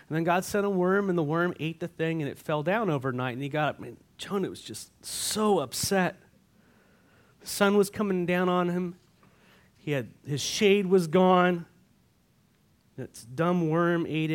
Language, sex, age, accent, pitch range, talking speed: English, male, 30-49, American, 145-190 Hz, 185 wpm